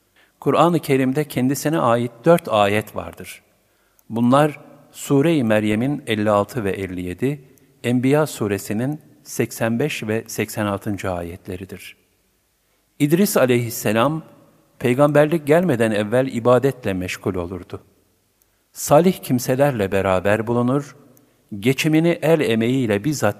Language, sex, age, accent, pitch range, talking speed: Turkish, male, 50-69, native, 95-135 Hz, 90 wpm